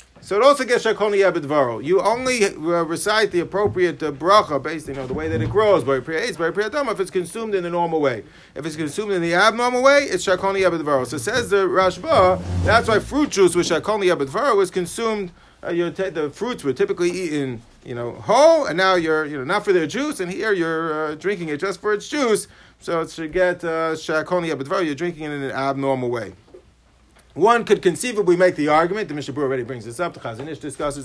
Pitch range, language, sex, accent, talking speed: 150-200 Hz, English, male, American, 215 wpm